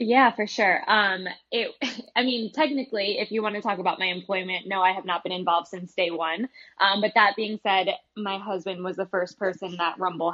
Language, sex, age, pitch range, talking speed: English, female, 10-29, 170-200 Hz, 220 wpm